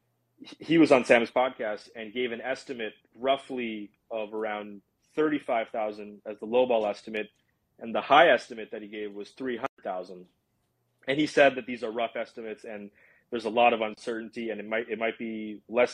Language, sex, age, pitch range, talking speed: English, male, 30-49, 105-130 Hz, 180 wpm